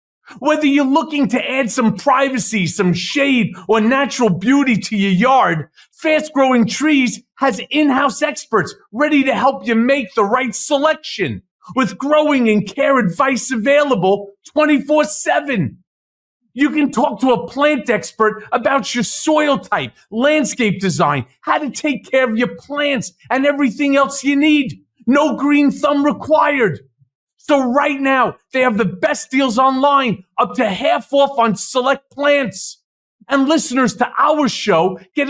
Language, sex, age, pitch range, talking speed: English, male, 40-59, 225-290 Hz, 150 wpm